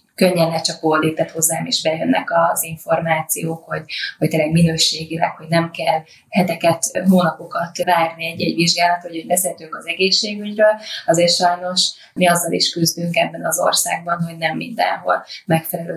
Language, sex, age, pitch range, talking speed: Hungarian, female, 20-39, 165-185 Hz, 145 wpm